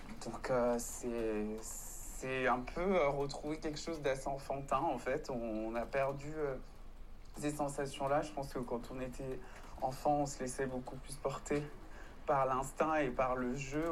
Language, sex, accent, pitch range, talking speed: French, male, French, 130-155 Hz, 175 wpm